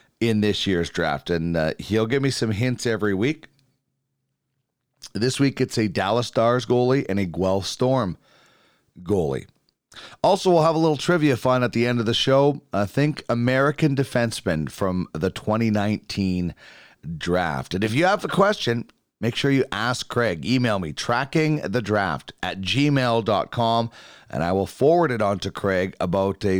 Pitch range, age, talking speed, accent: 95-130 Hz, 40-59, 160 wpm, American